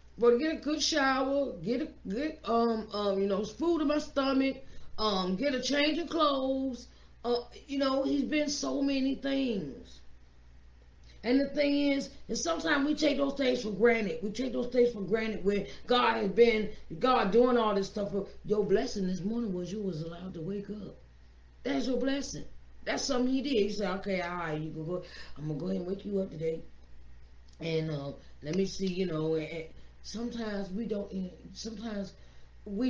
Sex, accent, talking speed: female, American, 195 wpm